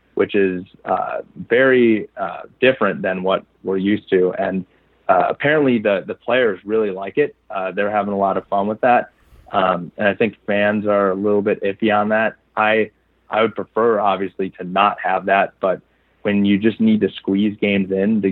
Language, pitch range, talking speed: English, 95-105 Hz, 195 wpm